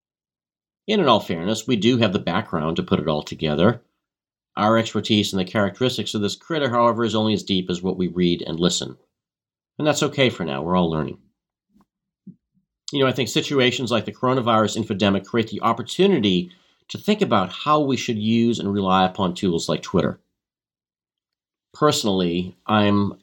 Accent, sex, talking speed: American, male, 175 wpm